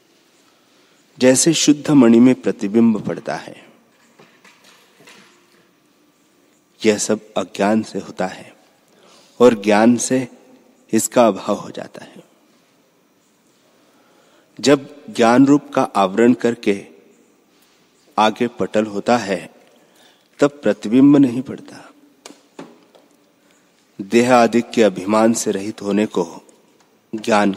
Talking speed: 95 wpm